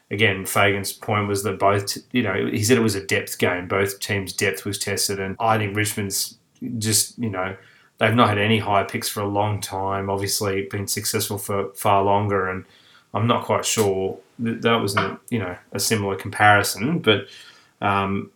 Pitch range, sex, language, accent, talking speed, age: 100-110 Hz, male, English, Australian, 185 wpm, 20-39